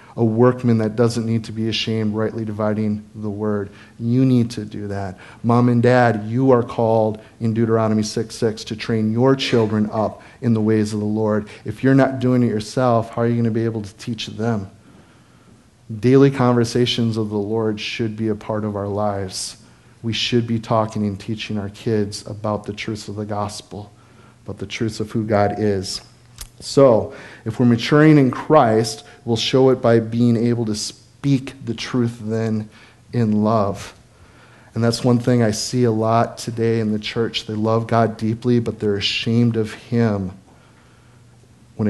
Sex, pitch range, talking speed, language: male, 105-120 Hz, 185 wpm, English